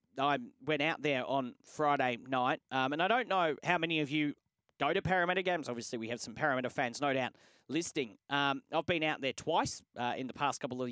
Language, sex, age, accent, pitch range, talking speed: English, male, 30-49, Australian, 135-165 Hz, 225 wpm